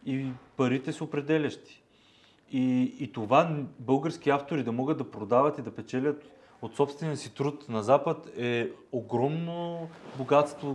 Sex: male